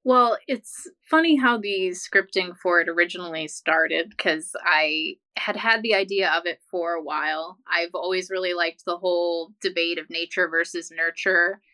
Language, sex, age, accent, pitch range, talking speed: English, female, 20-39, American, 170-210 Hz, 165 wpm